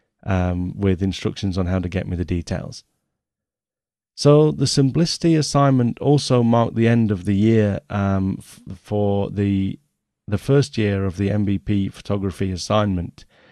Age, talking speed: 30-49, 145 wpm